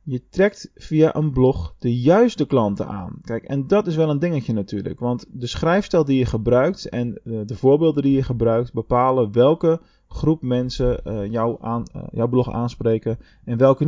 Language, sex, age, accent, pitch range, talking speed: Dutch, male, 20-39, Dutch, 110-150 Hz, 175 wpm